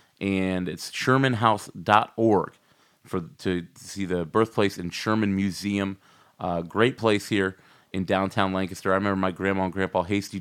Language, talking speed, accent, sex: English, 150 wpm, American, male